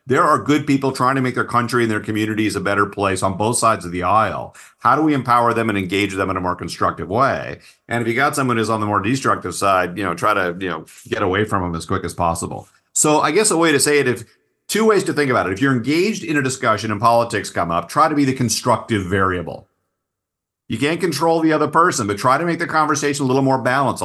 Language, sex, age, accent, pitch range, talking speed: English, male, 40-59, American, 105-135 Hz, 265 wpm